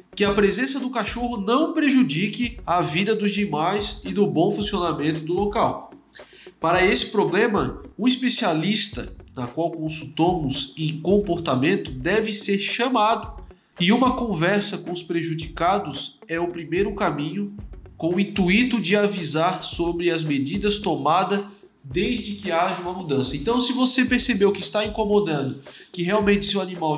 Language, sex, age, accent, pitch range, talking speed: Portuguese, male, 20-39, Brazilian, 165-210 Hz, 145 wpm